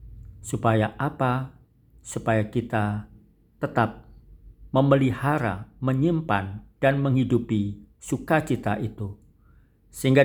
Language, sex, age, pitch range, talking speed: Indonesian, male, 50-69, 100-130 Hz, 70 wpm